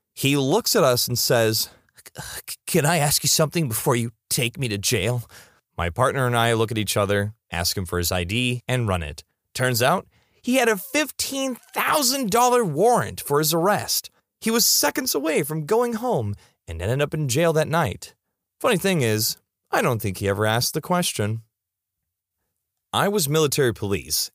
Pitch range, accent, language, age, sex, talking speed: 95-155 Hz, American, English, 30-49, male, 175 wpm